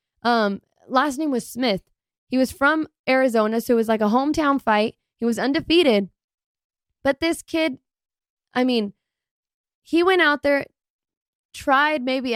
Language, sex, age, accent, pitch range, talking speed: English, female, 10-29, American, 215-260 Hz, 145 wpm